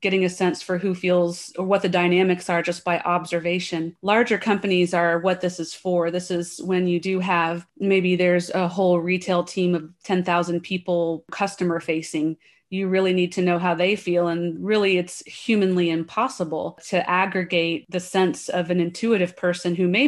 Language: English